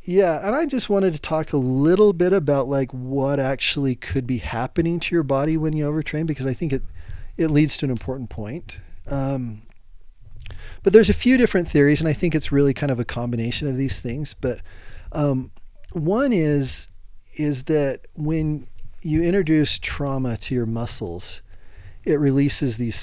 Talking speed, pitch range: 175 wpm, 110-150 Hz